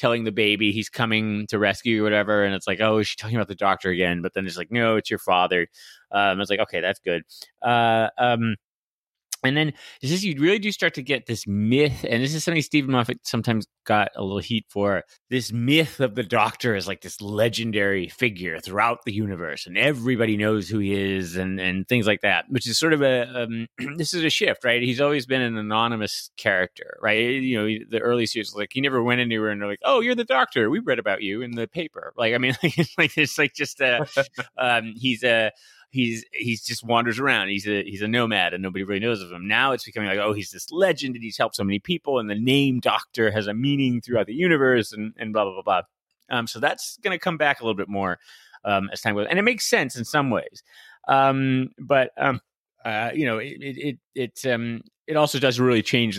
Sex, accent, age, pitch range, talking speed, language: male, American, 30-49, 105-130 Hz, 235 wpm, English